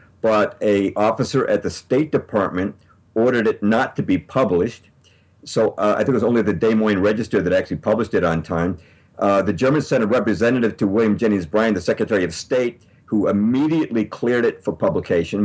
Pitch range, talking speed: 95-115 Hz, 195 wpm